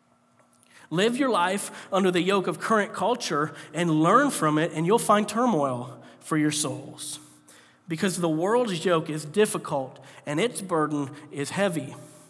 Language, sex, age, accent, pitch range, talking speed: English, male, 40-59, American, 155-200 Hz, 150 wpm